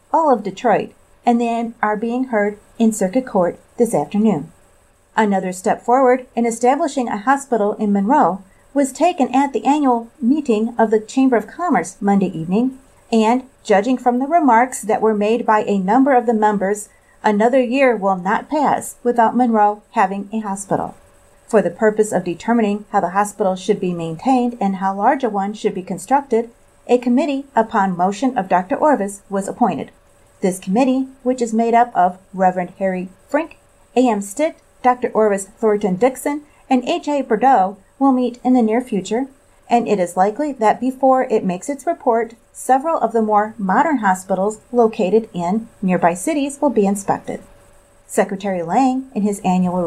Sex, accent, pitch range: female, American, 200-260 Hz